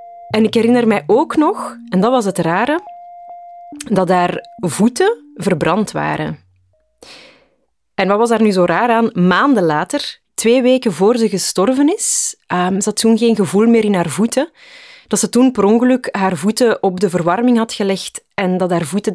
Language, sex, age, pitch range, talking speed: Dutch, female, 20-39, 180-235 Hz, 180 wpm